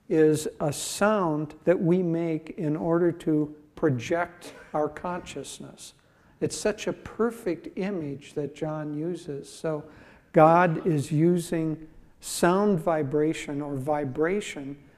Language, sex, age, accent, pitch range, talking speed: English, male, 60-79, American, 150-180 Hz, 110 wpm